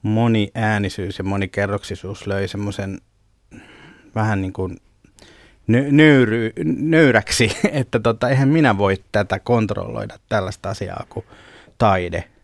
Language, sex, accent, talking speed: Finnish, male, native, 105 wpm